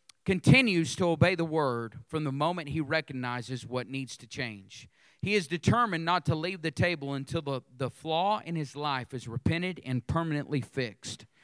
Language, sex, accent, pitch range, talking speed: English, male, American, 135-170 Hz, 180 wpm